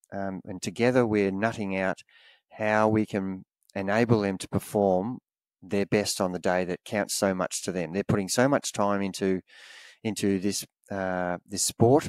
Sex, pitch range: male, 95-115 Hz